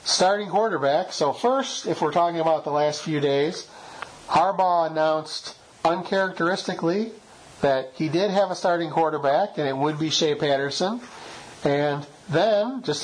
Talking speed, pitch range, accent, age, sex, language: 145 wpm, 140-170 Hz, American, 40-59, male, English